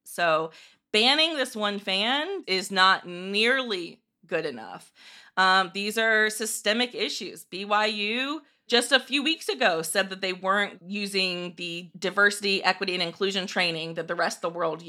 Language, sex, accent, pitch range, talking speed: English, female, American, 190-245 Hz, 155 wpm